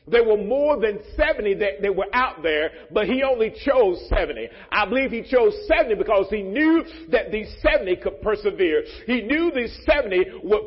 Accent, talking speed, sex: American, 185 wpm, male